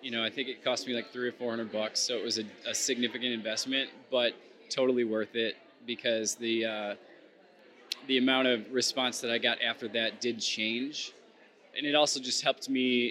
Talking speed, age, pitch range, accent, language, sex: 200 wpm, 20-39, 115-125 Hz, American, English, male